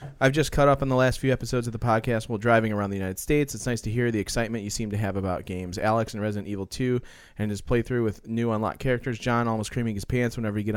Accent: American